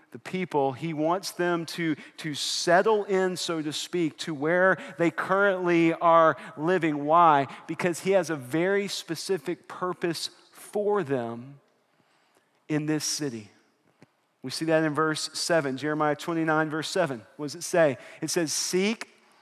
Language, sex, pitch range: English, male, 160-230 Hz